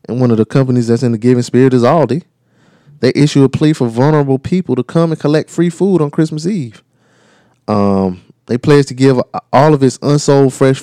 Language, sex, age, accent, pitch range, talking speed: English, male, 20-39, American, 105-130 Hz, 210 wpm